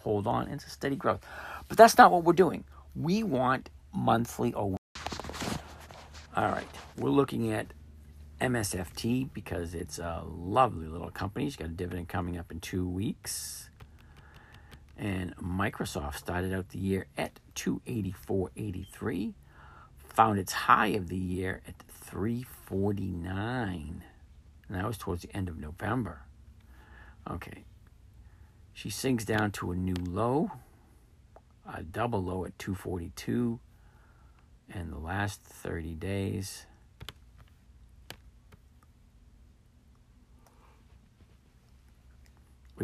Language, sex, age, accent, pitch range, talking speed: English, male, 50-69, American, 75-105 Hz, 110 wpm